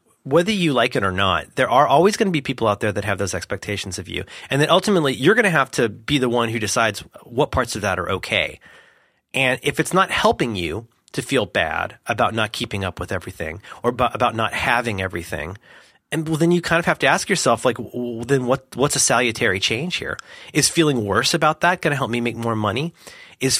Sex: male